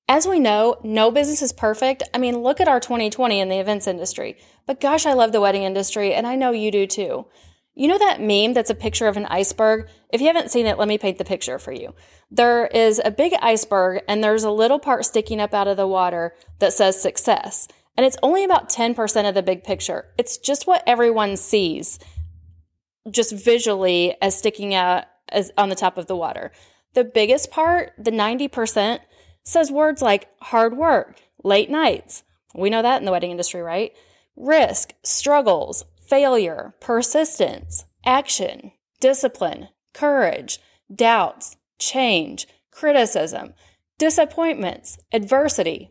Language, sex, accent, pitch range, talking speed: English, female, American, 200-270 Hz, 170 wpm